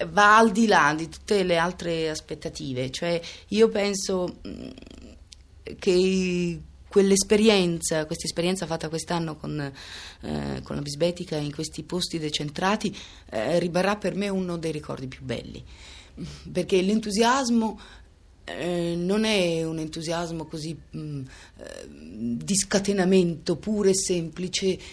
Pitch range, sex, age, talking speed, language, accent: 145-200 Hz, female, 30-49, 115 wpm, Italian, native